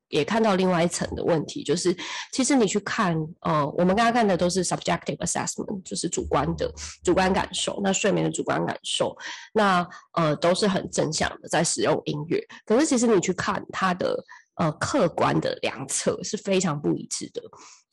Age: 20-39